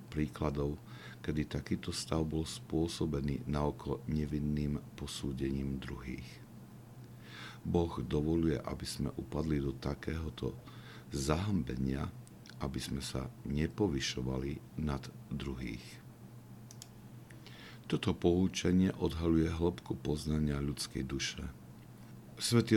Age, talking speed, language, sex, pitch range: 60-79, 80 wpm, Slovak, male, 70-85 Hz